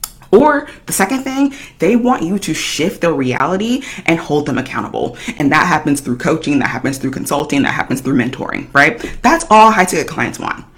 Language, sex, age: English, female, 30-49